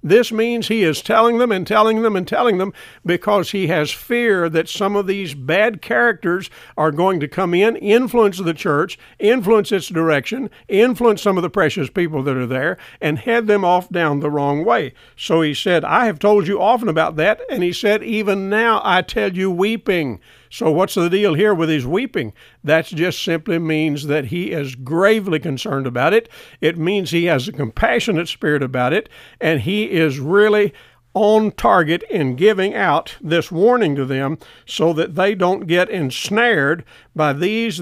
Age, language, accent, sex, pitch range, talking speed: 50-69, English, American, male, 155-210 Hz, 190 wpm